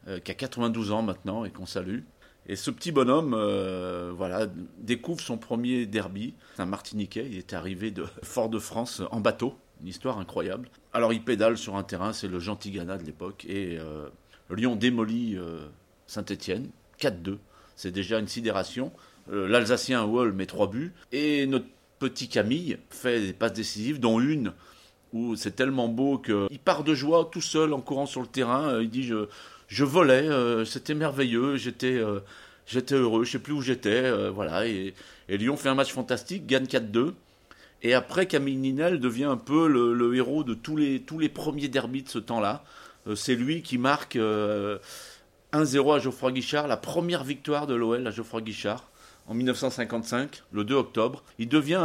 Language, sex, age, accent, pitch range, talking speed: French, male, 40-59, French, 105-140 Hz, 180 wpm